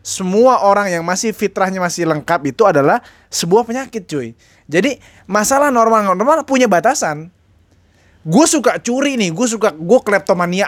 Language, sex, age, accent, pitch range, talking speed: Indonesian, male, 20-39, native, 160-215 Hz, 145 wpm